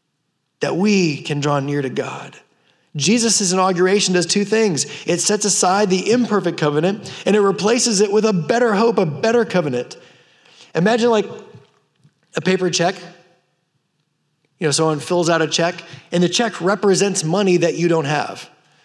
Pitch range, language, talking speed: 170-230 Hz, English, 160 wpm